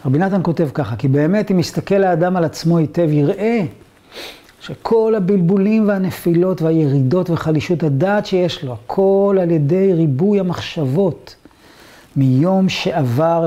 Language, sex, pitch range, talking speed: Hebrew, male, 140-195 Hz, 125 wpm